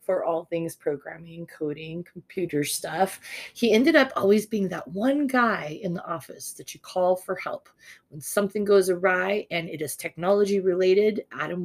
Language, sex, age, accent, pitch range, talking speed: English, female, 30-49, American, 175-215 Hz, 170 wpm